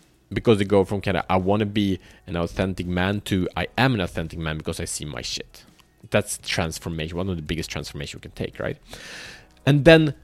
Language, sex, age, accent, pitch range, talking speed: Swedish, male, 30-49, Norwegian, 90-120 Hz, 215 wpm